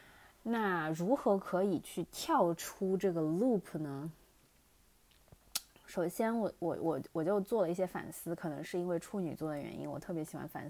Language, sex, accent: Chinese, female, native